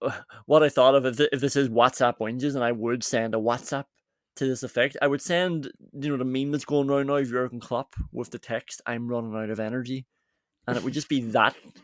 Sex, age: male, 20-39